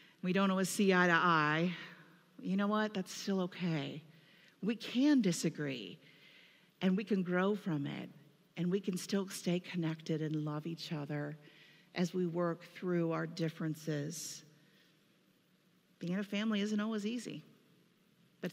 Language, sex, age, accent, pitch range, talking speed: English, female, 50-69, American, 165-200 Hz, 150 wpm